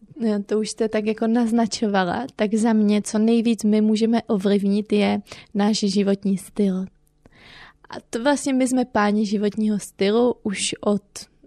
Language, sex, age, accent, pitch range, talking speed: Czech, female, 20-39, native, 200-225 Hz, 145 wpm